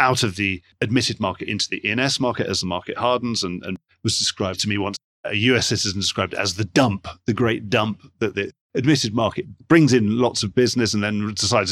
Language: English